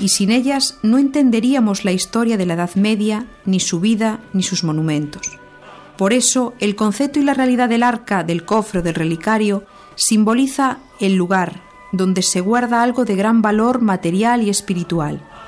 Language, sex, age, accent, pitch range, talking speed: Spanish, female, 50-69, Spanish, 190-245 Hz, 165 wpm